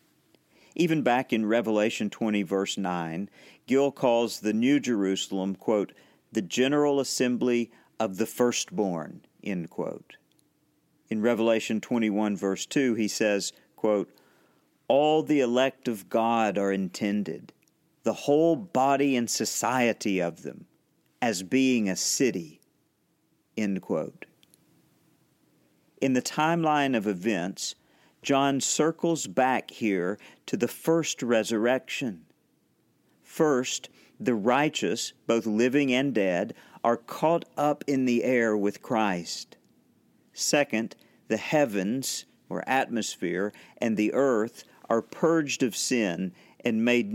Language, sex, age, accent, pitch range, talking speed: English, male, 50-69, American, 105-140 Hz, 115 wpm